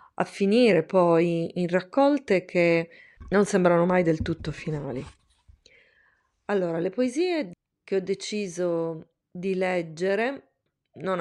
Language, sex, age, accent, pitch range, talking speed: Italian, female, 20-39, native, 165-190 Hz, 110 wpm